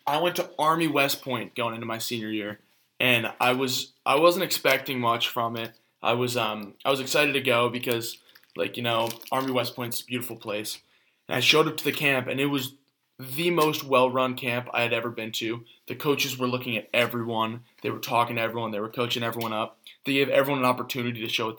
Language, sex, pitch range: English, male, 115-135 Hz